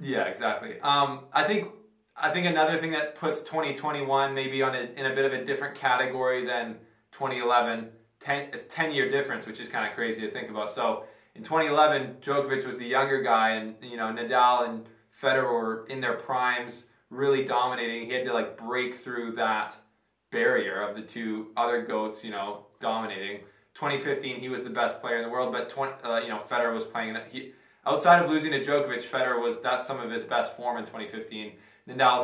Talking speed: 200 wpm